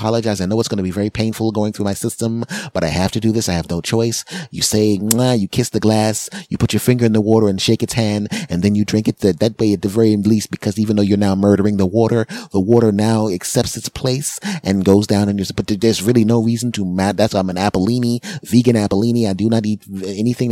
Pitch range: 100-125 Hz